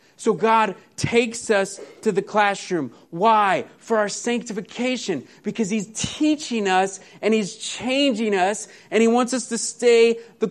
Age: 30-49